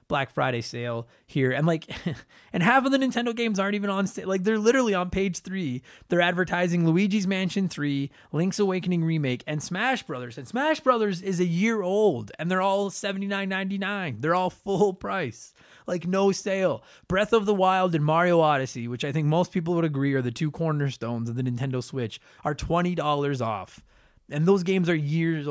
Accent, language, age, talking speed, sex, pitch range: American, English, 20-39, 195 wpm, male, 135-190 Hz